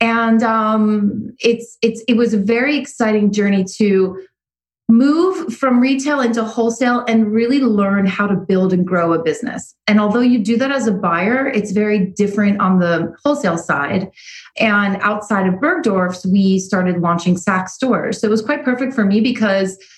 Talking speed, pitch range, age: 175 wpm, 185-230 Hz, 30-49